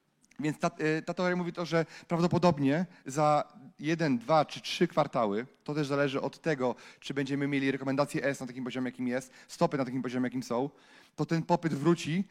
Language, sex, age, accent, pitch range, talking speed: Polish, male, 30-49, native, 145-175 Hz, 190 wpm